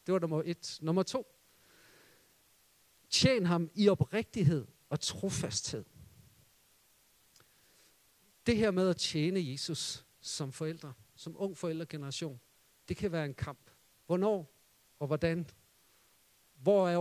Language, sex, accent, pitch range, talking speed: Danish, male, native, 155-195 Hz, 115 wpm